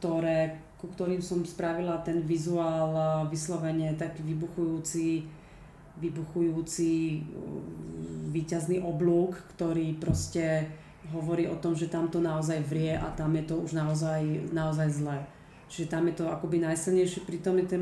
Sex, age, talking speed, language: female, 30-49, 130 wpm, Slovak